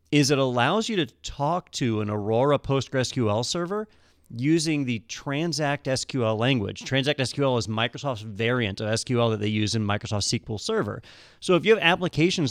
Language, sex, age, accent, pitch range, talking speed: English, male, 40-59, American, 120-150 Hz, 170 wpm